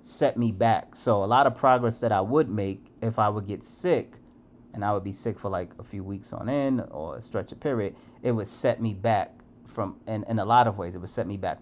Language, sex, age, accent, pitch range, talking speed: English, male, 30-49, American, 100-120 Hz, 265 wpm